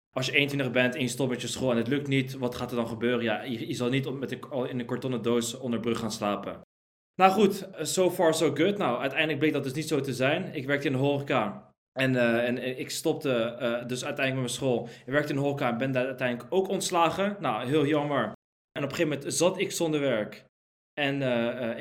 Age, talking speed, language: 20-39, 255 wpm, Dutch